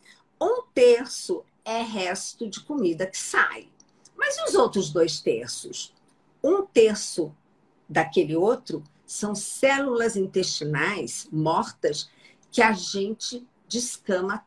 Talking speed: 110 wpm